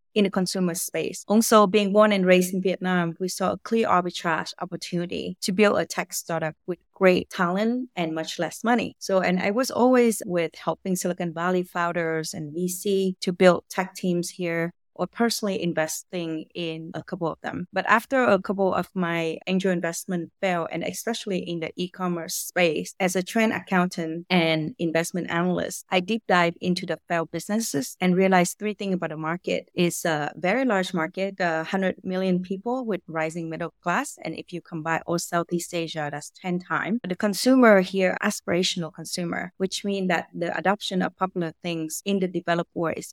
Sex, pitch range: female, 170-195 Hz